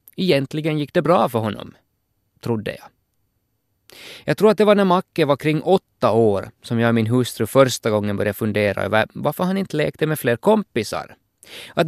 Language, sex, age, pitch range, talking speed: Finnish, male, 20-39, 110-150 Hz, 185 wpm